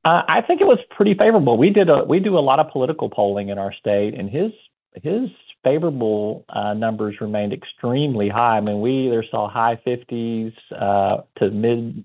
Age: 40-59